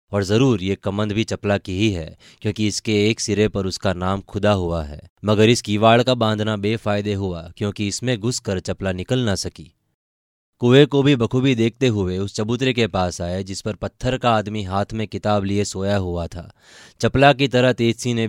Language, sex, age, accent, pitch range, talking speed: Hindi, male, 20-39, native, 95-120 Hz, 205 wpm